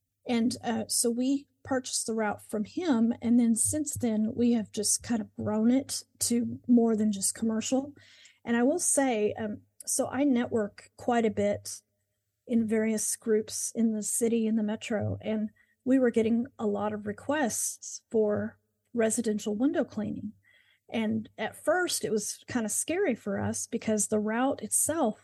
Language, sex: English, female